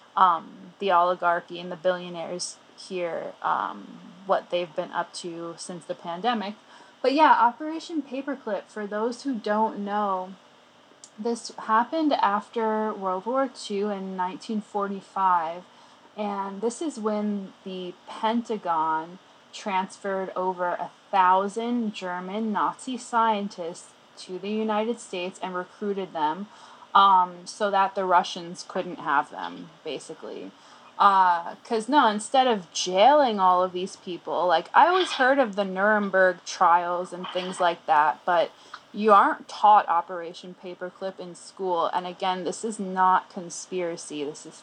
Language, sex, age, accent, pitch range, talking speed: English, female, 20-39, American, 180-220 Hz, 135 wpm